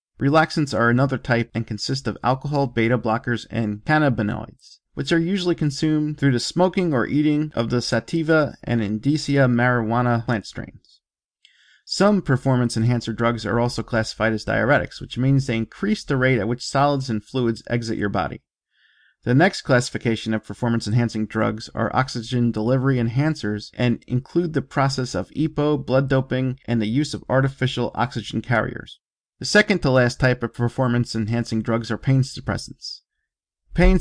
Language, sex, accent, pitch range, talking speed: English, male, American, 115-145 Hz, 160 wpm